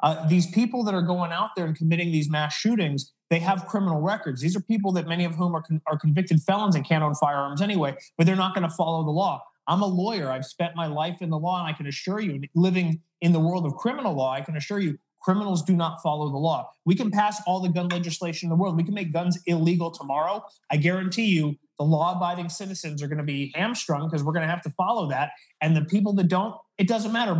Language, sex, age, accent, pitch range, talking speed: English, male, 30-49, American, 160-190 Hz, 250 wpm